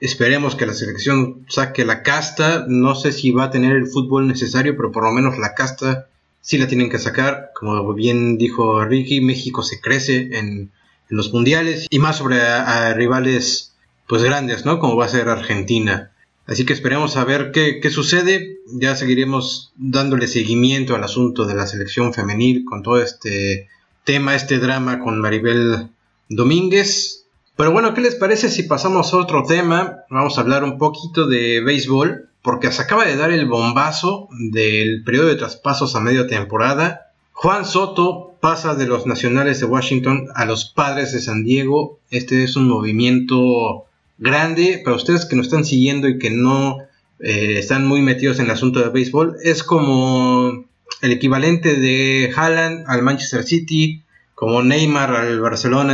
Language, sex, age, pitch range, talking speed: Spanish, male, 30-49, 120-145 Hz, 175 wpm